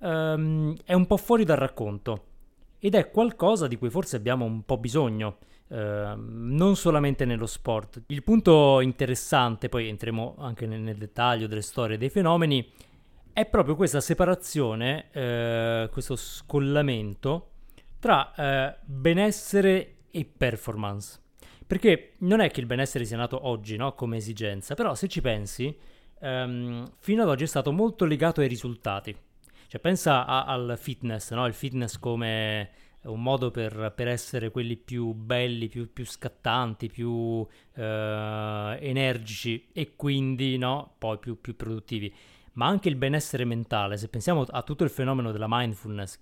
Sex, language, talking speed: male, Italian, 150 wpm